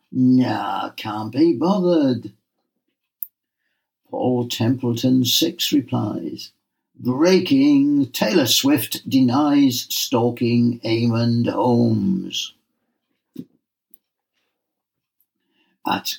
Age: 60-79